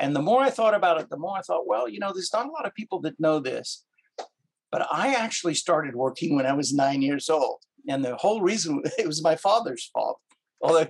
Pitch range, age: 135-175 Hz, 50-69